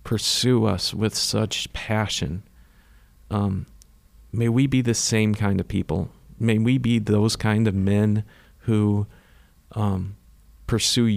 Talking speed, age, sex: 130 wpm, 40-59, male